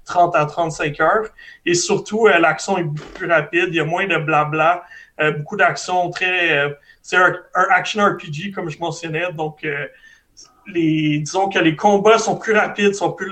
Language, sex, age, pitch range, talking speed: French, male, 30-49, 155-185 Hz, 160 wpm